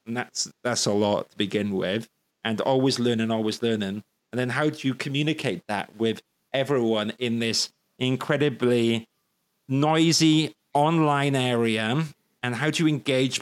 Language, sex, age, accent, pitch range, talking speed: English, male, 30-49, British, 110-135 Hz, 150 wpm